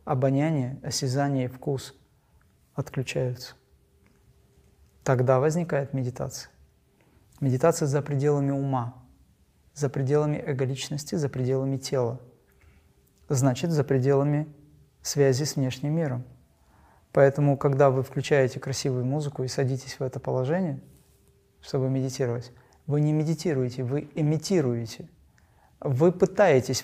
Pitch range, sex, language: 130-155 Hz, male, Russian